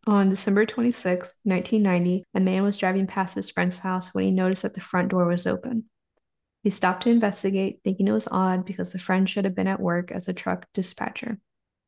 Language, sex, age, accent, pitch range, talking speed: English, female, 20-39, American, 180-210 Hz, 205 wpm